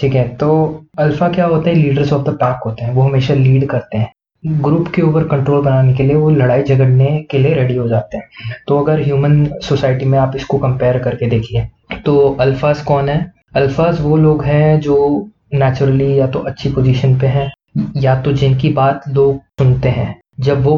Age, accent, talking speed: 20-39, native, 200 wpm